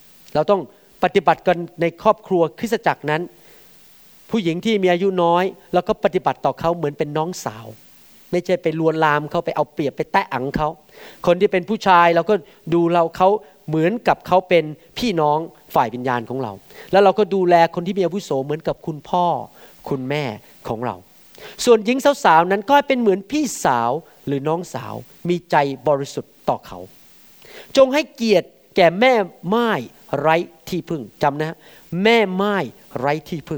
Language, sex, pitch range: Thai, male, 155-220 Hz